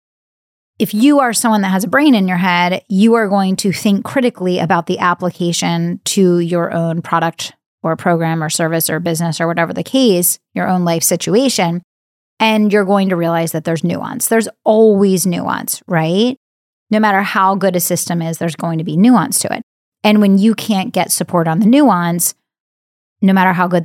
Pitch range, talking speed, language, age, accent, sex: 170-200 Hz, 195 wpm, English, 30-49, American, female